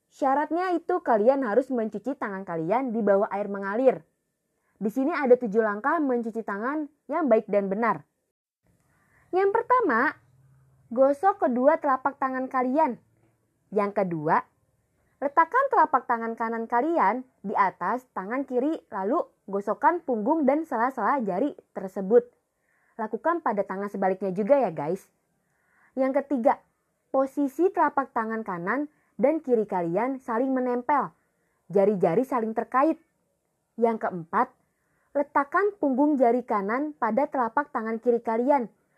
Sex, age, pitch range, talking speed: female, 20-39, 210-290 Hz, 120 wpm